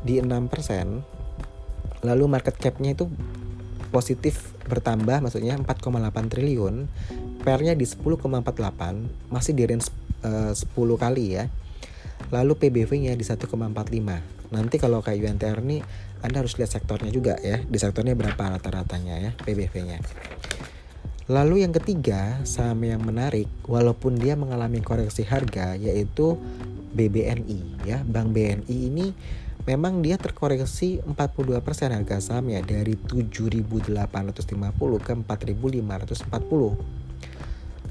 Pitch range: 95-125 Hz